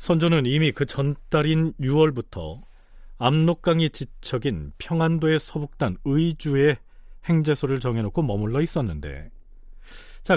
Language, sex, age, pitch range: Korean, male, 40-59, 95-155 Hz